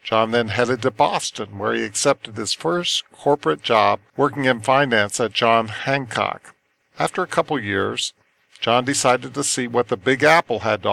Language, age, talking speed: English, 50-69, 175 wpm